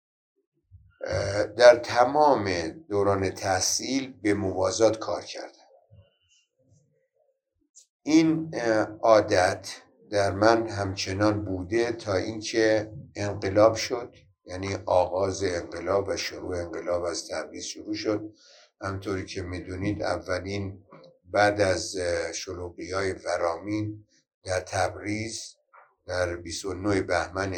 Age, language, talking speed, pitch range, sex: 60-79, Persian, 90 wpm, 90-105 Hz, male